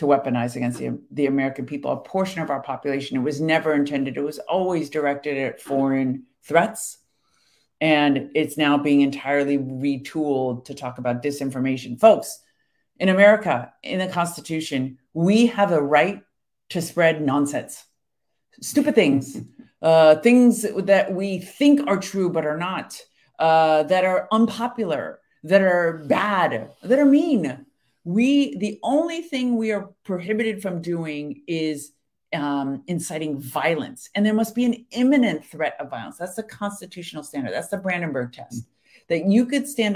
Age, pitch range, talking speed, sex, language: 50-69, 145-215 Hz, 155 wpm, female, English